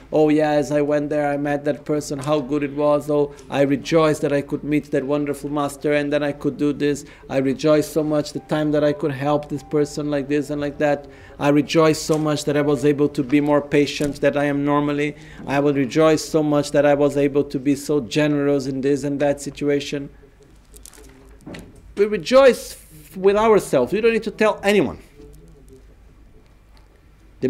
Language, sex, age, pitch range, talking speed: Italian, male, 50-69, 145-180 Hz, 200 wpm